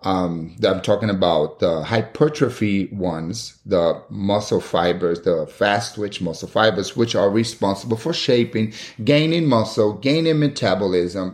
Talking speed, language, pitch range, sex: 125 wpm, English, 100-135 Hz, male